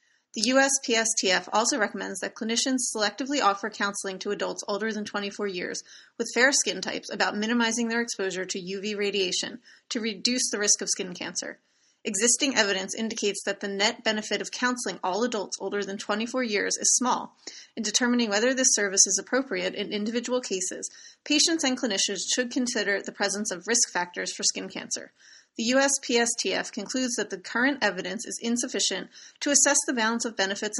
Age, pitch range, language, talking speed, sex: 30-49, 200-250 Hz, English, 170 wpm, female